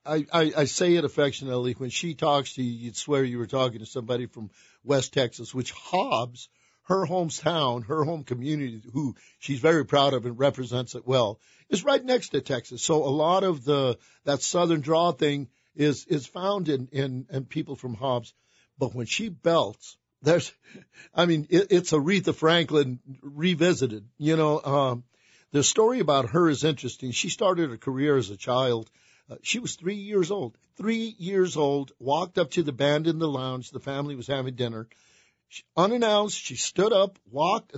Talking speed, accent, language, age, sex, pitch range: 180 wpm, American, English, 50-69, male, 130-170 Hz